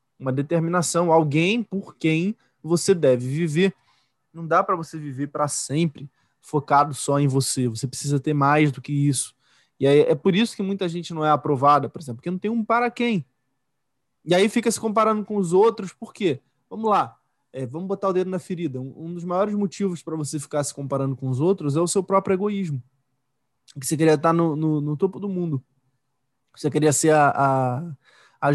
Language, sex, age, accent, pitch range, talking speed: Portuguese, male, 20-39, Brazilian, 140-195 Hz, 210 wpm